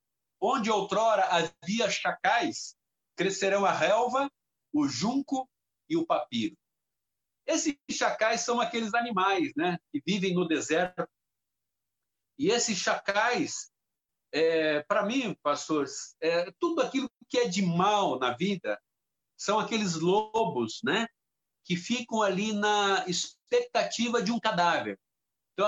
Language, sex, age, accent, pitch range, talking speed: Portuguese, male, 60-79, Brazilian, 185-235 Hz, 120 wpm